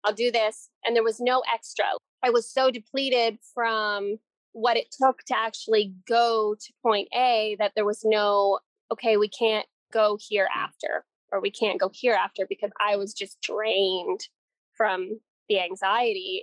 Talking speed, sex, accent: 170 wpm, female, American